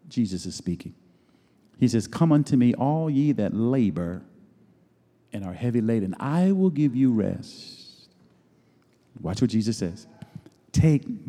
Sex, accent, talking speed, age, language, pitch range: male, American, 140 wpm, 50-69, English, 105-165 Hz